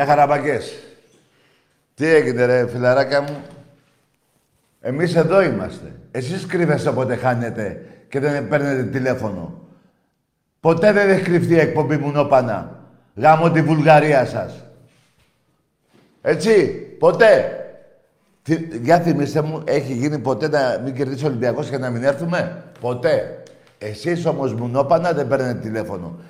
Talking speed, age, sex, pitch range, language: 120 wpm, 50-69, male, 130-170 Hz, Greek